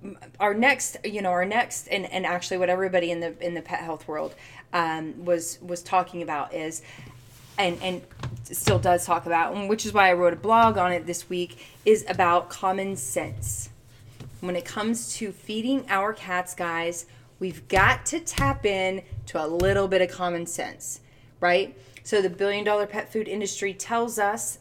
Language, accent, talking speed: English, American, 185 wpm